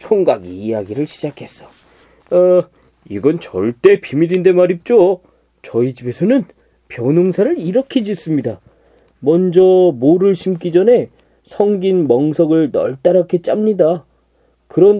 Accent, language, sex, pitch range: native, Korean, male, 140-195 Hz